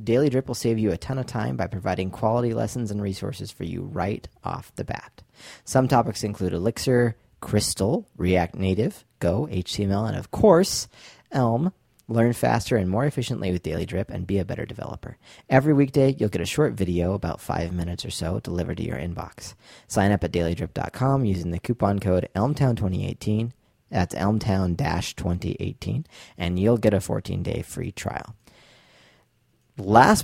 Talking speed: 165 wpm